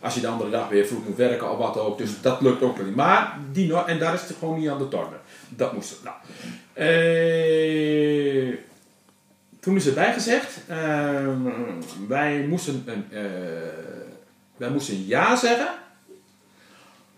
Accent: Dutch